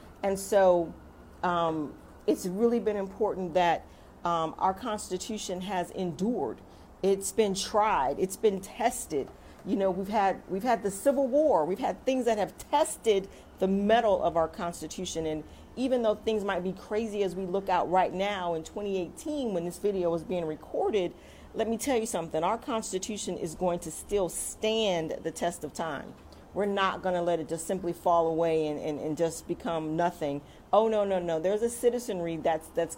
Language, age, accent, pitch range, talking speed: English, 40-59, American, 170-220 Hz, 180 wpm